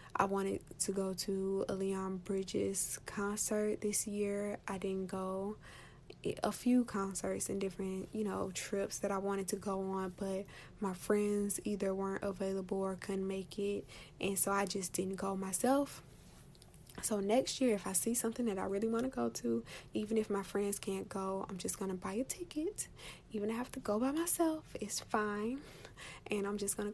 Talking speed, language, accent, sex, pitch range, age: 195 wpm, English, American, female, 190-210 Hz, 10-29